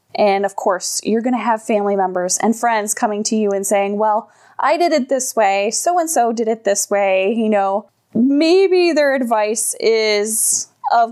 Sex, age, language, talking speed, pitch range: female, 20-39, English, 185 wpm, 205-260 Hz